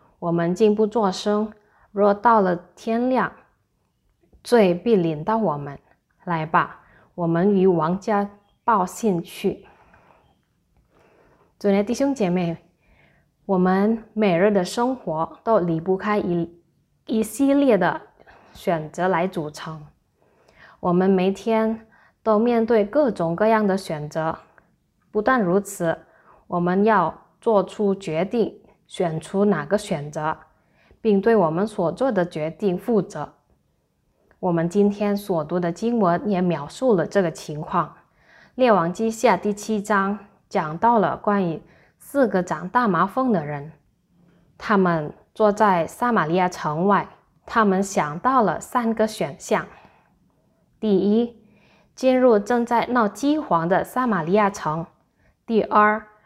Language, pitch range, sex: Indonesian, 170-220 Hz, female